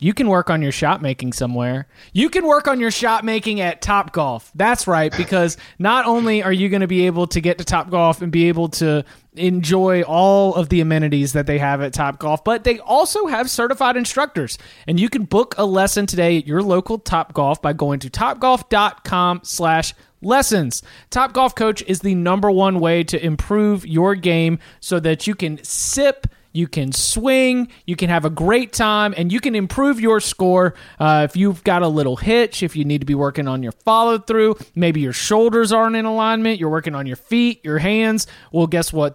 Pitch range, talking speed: 155-215 Hz, 210 wpm